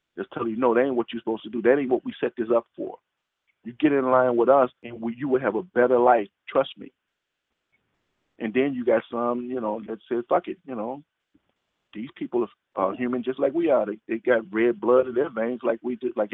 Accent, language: American, English